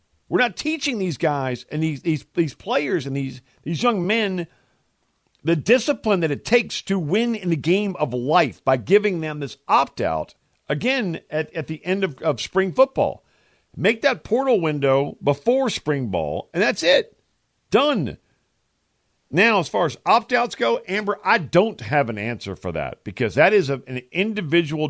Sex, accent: male, American